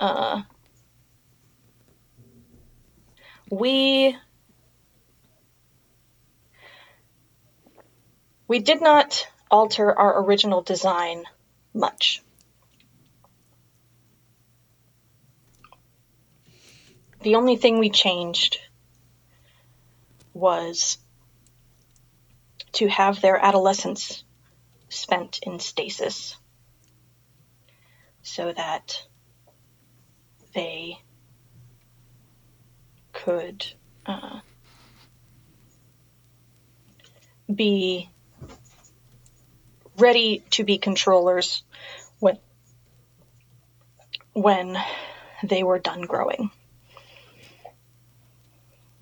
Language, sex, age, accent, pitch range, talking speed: English, female, 30-49, American, 120-180 Hz, 50 wpm